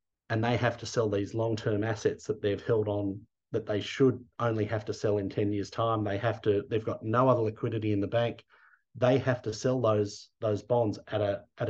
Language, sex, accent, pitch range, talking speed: English, male, Australian, 105-120 Hz, 230 wpm